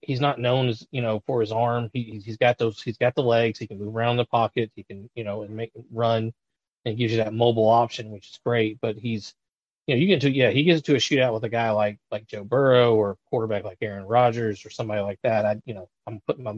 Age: 30-49